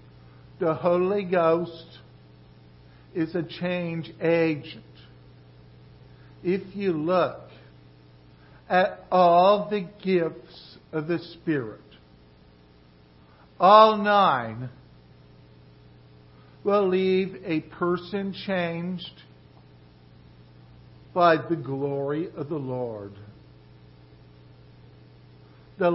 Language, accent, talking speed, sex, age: English, American, 70 wpm, male, 60-79